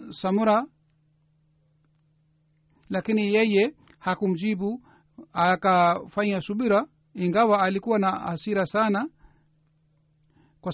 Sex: male